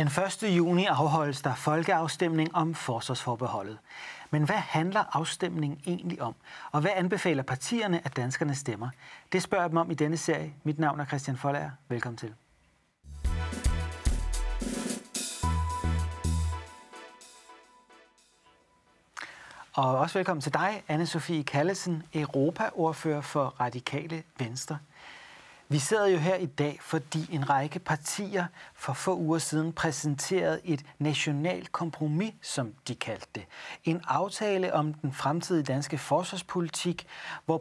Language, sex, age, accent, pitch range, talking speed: Danish, male, 40-59, native, 135-170 Hz, 120 wpm